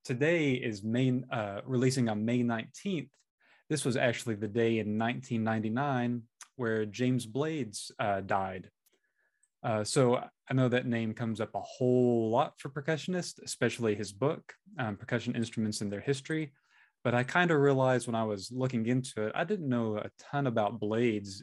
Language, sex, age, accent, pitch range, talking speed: English, male, 20-39, American, 110-130 Hz, 165 wpm